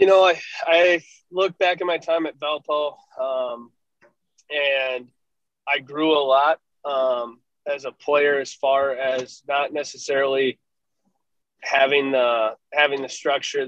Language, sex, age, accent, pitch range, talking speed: English, male, 20-39, American, 130-145 Hz, 130 wpm